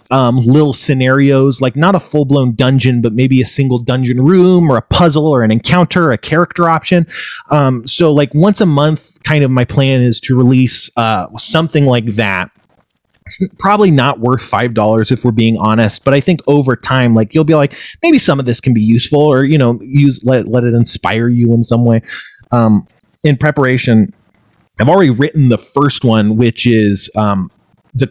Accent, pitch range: American, 120-150 Hz